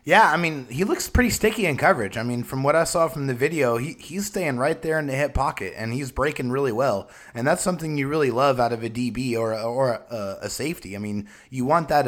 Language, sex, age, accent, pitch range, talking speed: English, male, 30-49, American, 125-170 Hz, 260 wpm